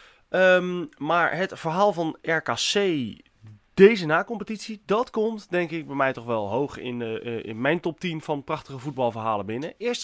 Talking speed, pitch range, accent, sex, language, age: 160 wpm, 140-185 Hz, Dutch, male, Dutch, 30-49